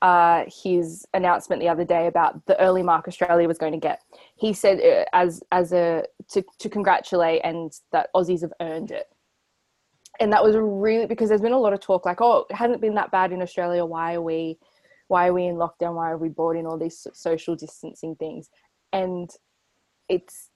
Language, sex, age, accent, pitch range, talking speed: English, female, 20-39, Australian, 165-195 Hz, 205 wpm